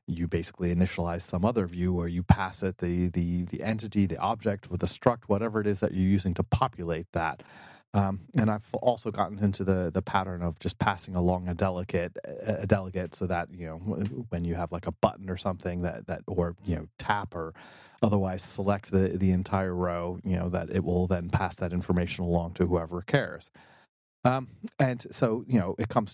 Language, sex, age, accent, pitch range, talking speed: English, male, 30-49, American, 90-110 Hz, 205 wpm